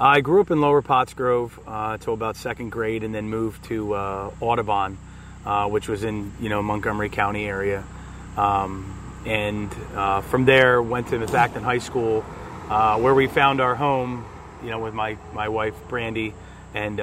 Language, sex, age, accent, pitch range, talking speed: English, male, 30-49, American, 105-125 Hz, 180 wpm